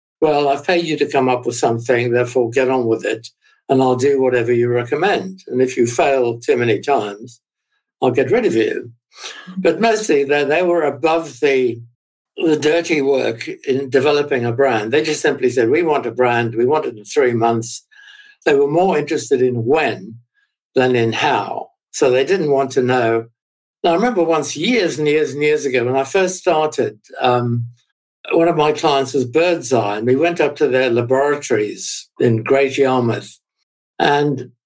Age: 60-79